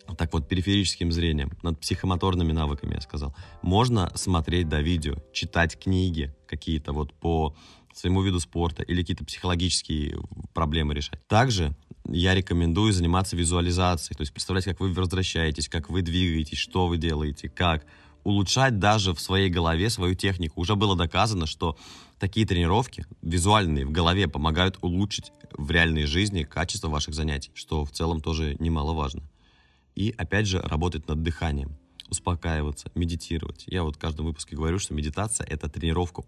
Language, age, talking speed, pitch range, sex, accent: Russian, 20-39, 150 wpm, 75-95 Hz, male, native